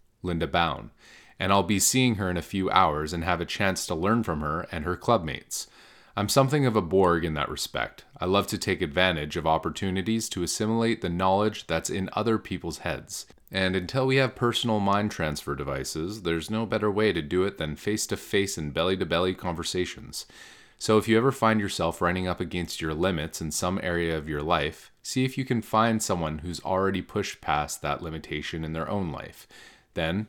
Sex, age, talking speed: male, 30-49, 200 wpm